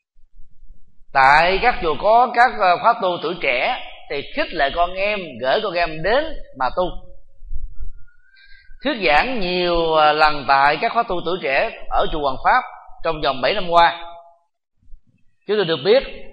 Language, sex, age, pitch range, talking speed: Vietnamese, male, 30-49, 155-230 Hz, 160 wpm